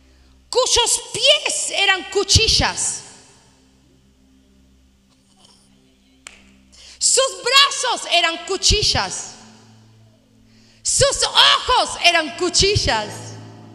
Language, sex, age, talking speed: Spanish, female, 40-59, 50 wpm